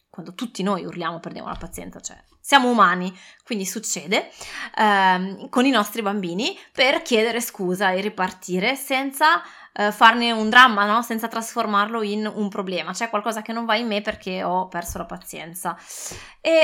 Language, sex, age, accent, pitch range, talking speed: Italian, female, 20-39, native, 185-240 Hz, 165 wpm